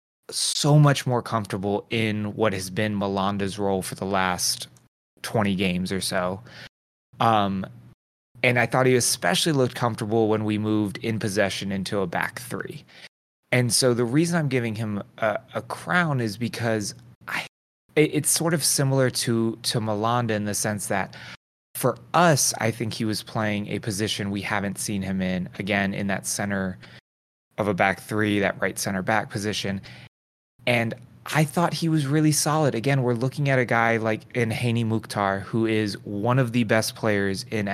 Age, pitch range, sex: 20-39, 100-130 Hz, male